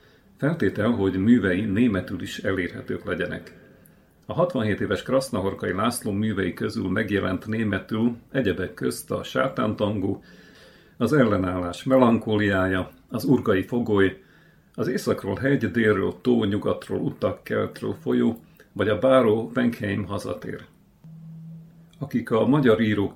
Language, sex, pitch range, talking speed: Hungarian, male, 100-130 Hz, 110 wpm